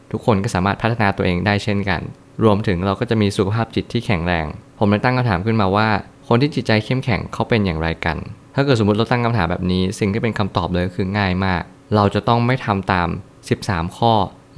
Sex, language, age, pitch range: male, Thai, 20-39, 95-115 Hz